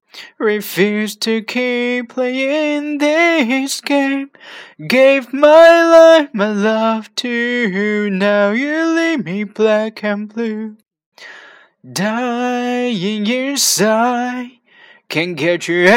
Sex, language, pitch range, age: male, Chinese, 220-290 Hz, 20-39